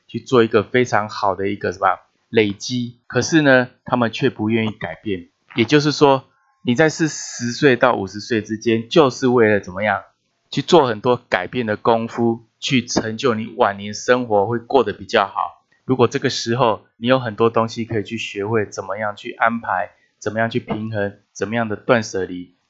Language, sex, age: Chinese, male, 20-39